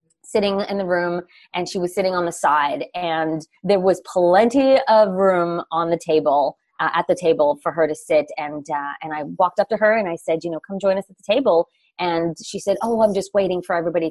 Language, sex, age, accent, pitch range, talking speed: English, female, 20-39, American, 165-205 Hz, 240 wpm